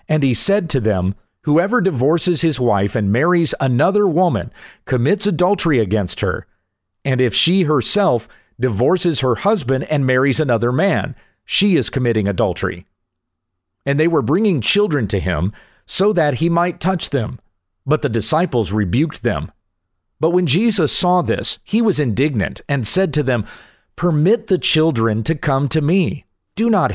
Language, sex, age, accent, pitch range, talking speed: English, male, 50-69, American, 105-170 Hz, 160 wpm